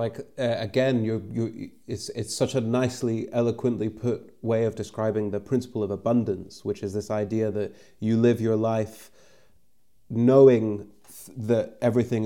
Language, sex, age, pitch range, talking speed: English, male, 30-49, 110-120 Hz, 155 wpm